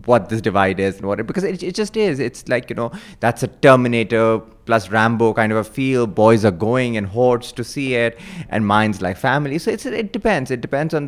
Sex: male